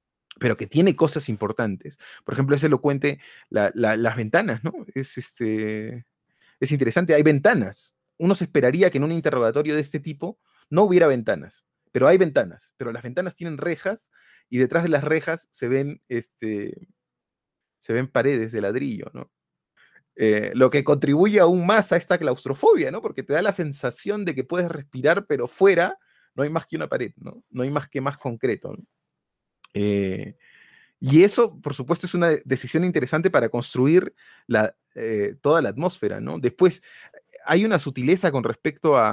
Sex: male